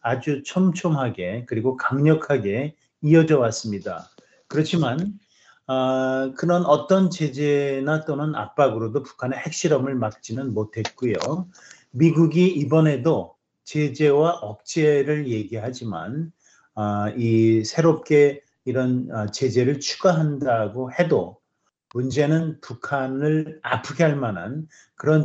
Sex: male